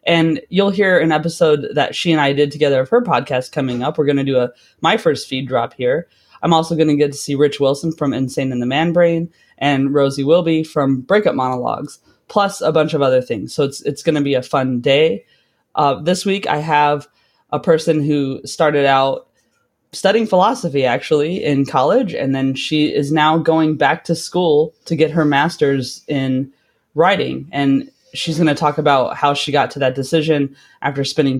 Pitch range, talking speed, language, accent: 135-160 Hz, 205 wpm, English, American